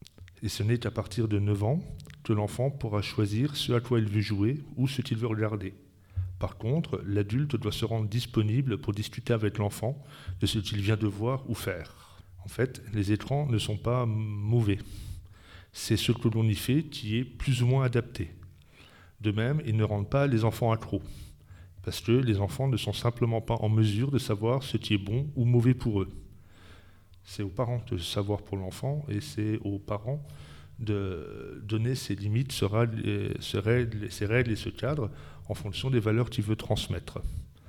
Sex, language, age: male, French, 40-59